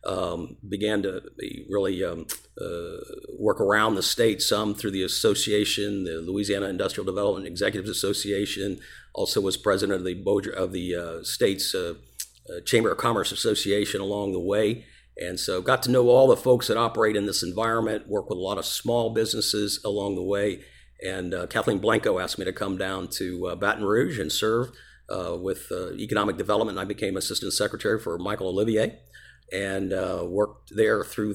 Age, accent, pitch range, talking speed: 50-69, American, 95-115 Hz, 180 wpm